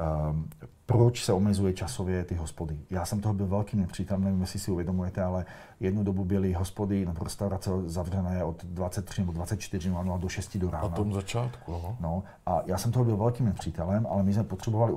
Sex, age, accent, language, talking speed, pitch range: male, 40-59, native, Czech, 195 wpm, 90-105 Hz